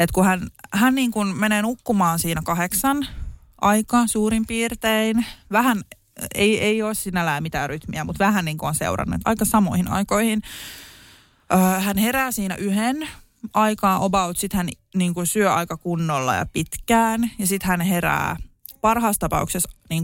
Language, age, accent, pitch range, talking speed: Finnish, 20-39, native, 175-225 Hz, 145 wpm